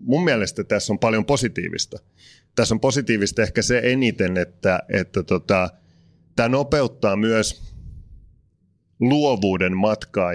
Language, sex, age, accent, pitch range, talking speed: Finnish, male, 30-49, native, 90-105 Hz, 110 wpm